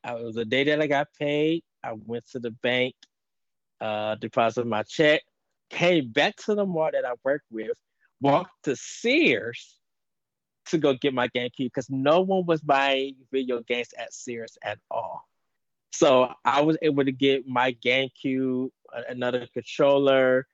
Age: 20-39